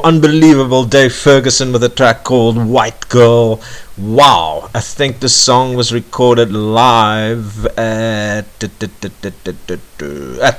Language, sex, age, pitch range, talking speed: English, male, 50-69, 85-115 Hz, 110 wpm